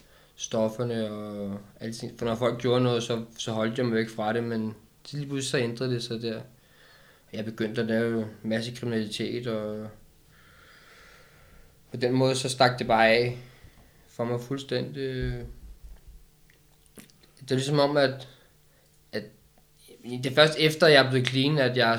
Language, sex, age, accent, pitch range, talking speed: Danish, male, 20-39, native, 115-140 Hz, 160 wpm